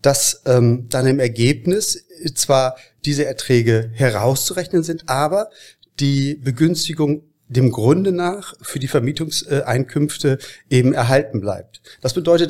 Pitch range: 130-155 Hz